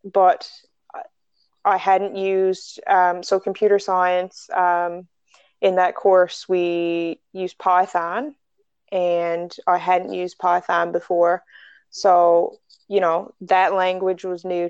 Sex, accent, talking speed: female, American, 115 wpm